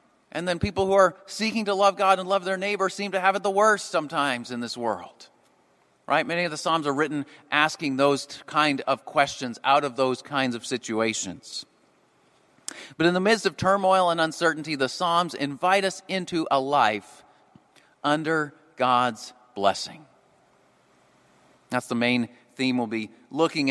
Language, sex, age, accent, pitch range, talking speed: English, male, 40-59, American, 130-190 Hz, 165 wpm